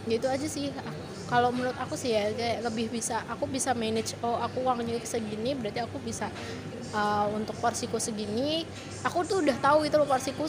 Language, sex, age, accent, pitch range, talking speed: Indonesian, female, 20-39, native, 225-260 Hz, 185 wpm